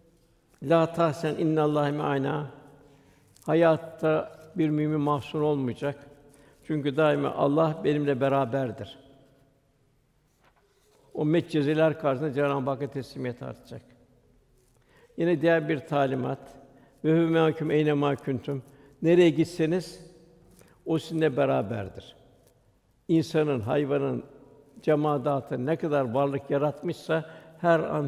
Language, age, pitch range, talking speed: Turkish, 60-79, 135-155 Hz, 95 wpm